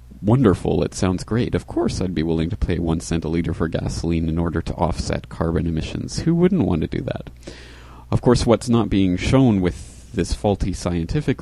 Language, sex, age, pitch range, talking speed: English, male, 30-49, 80-100 Hz, 205 wpm